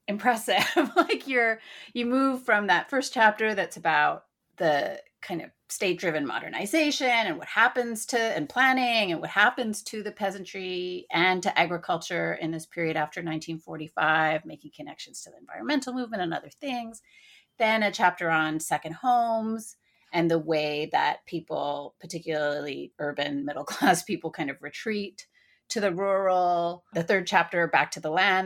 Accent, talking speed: American, 155 wpm